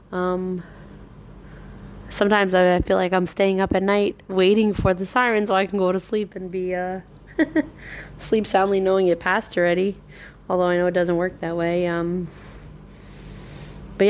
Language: English